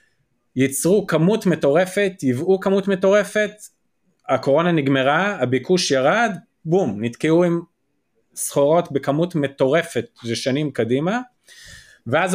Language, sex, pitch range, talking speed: Hebrew, male, 135-180 Hz, 95 wpm